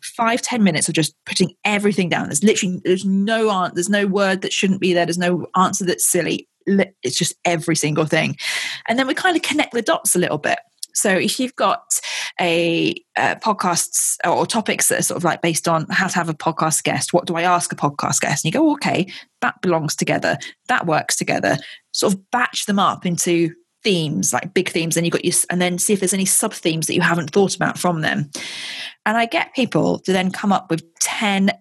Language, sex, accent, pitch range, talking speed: English, female, British, 165-200 Hz, 230 wpm